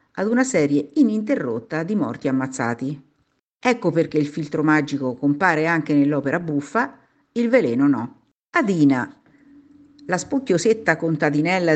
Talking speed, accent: 115 wpm, native